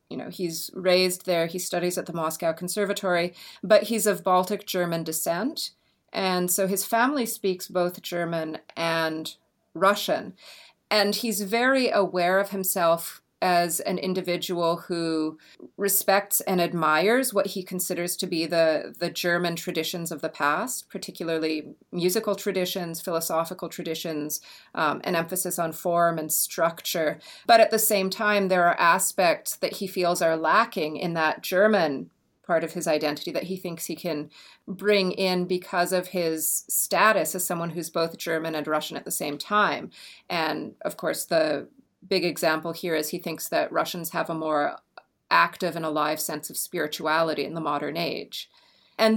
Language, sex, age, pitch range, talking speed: English, female, 30-49, 165-200 Hz, 160 wpm